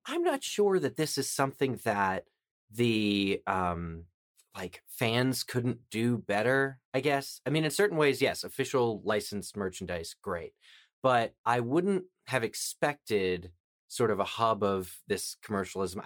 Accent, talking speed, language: American, 145 wpm, English